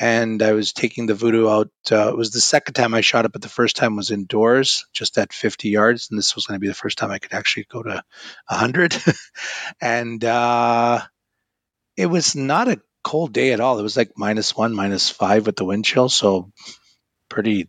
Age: 30-49